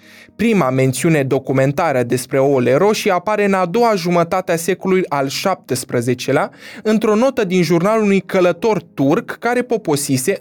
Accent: native